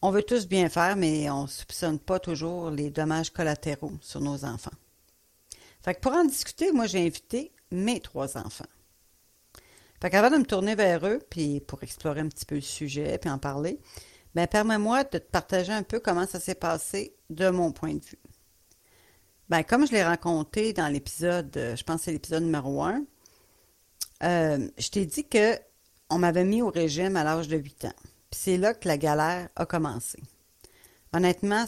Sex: female